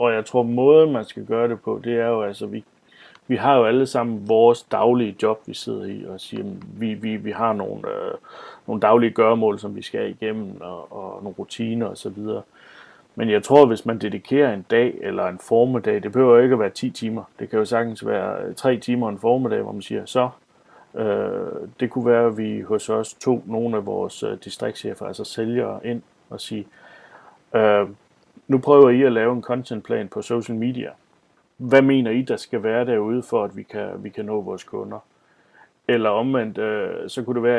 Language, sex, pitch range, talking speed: Danish, male, 110-125 Hz, 210 wpm